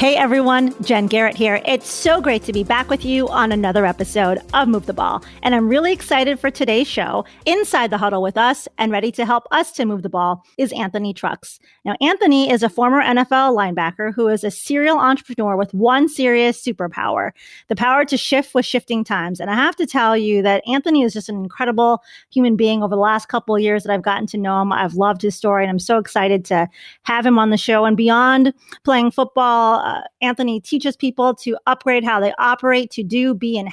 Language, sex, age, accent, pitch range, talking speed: English, female, 30-49, American, 215-260 Hz, 220 wpm